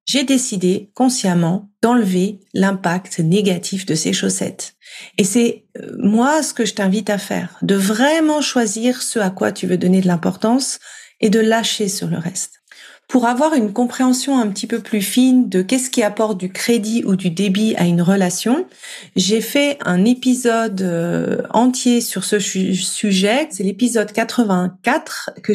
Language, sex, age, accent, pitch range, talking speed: French, female, 40-59, French, 185-245 Hz, 160 wpm